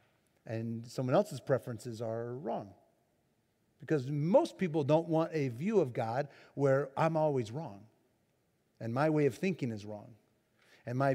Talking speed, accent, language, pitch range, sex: 150 wpm, American, English, 125-160 Hz, male